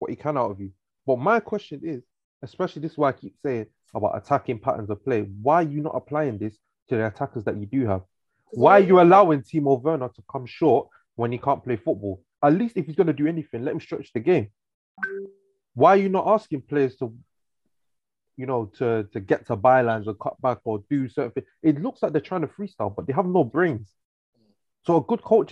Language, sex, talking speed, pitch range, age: English, male, 235 wpm, 115-185 Hz, 20-39